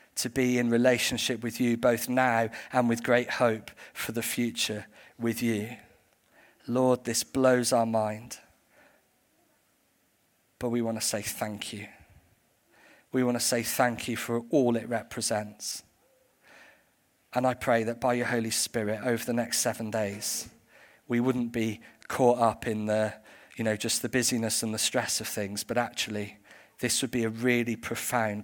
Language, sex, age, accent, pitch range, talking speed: English, male, 40-59, British, 110-120 Hz, 160 wpm